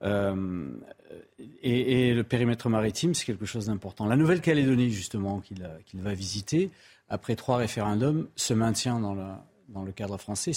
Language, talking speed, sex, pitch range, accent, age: French, 165 wpm, male, 105-125 Hz, French, 40-59